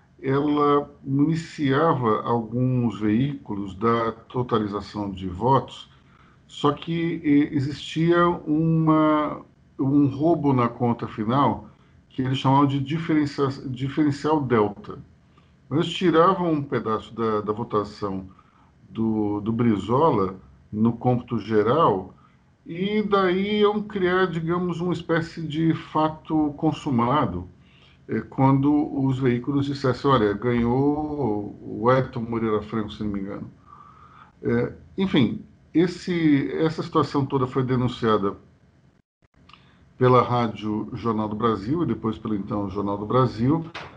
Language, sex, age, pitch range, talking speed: Portuguese, male, 50-69, 115-160 Hz, 105 wpm